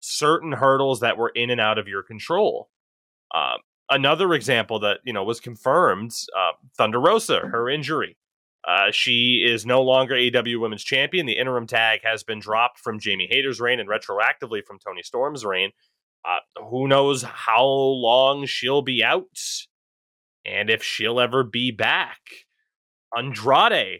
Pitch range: 110-135 Hz